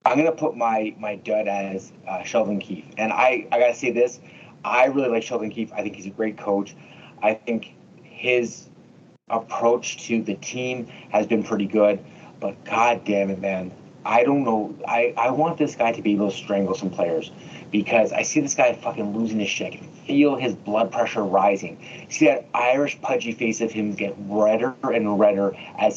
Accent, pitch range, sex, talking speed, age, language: American, 105-155 Hz, male, 205 wpm, 30-49, English